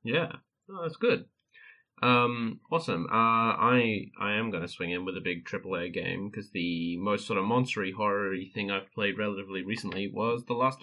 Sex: male